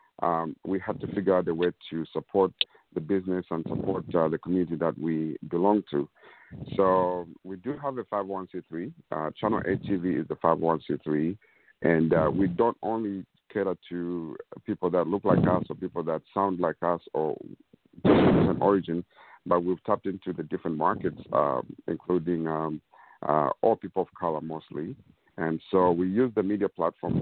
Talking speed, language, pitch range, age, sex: 175 wpm, English, 80-95 Hz, 50-69, male